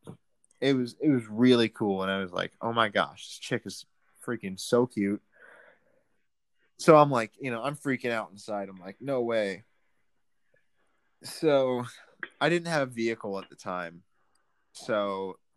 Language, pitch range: English, 100-125 Hz